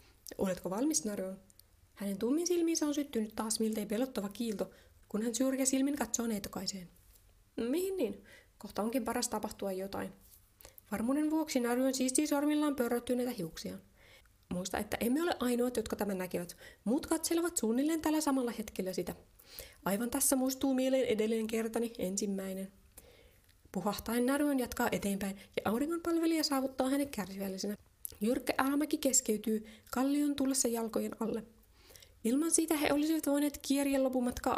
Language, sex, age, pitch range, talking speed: Finnish, female, 20-39, 205-280 Hz, 135 wpm